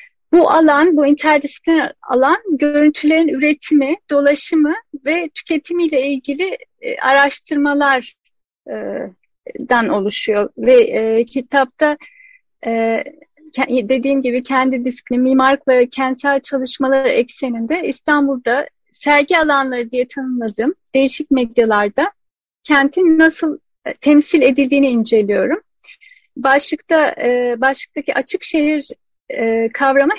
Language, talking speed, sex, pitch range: Turkish, 90 wpm, female, 260-320 Hz